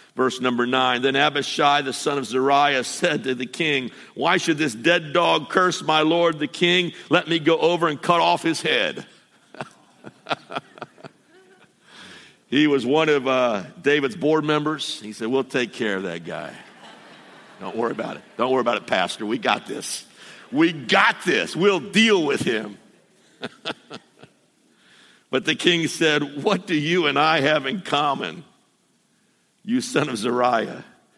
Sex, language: male, English